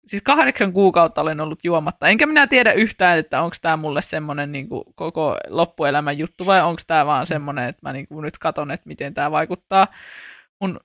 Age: 20-39